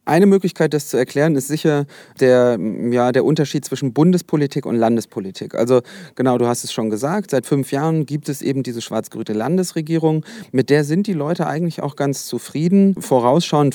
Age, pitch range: 30-49, 120-145 Hz